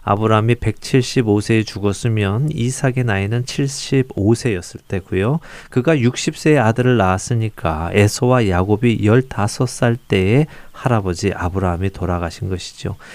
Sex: male